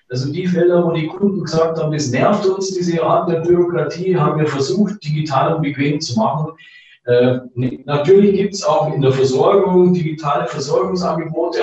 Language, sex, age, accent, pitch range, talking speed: German, male, 40-59, German, 135-180 Hz, 170 wpm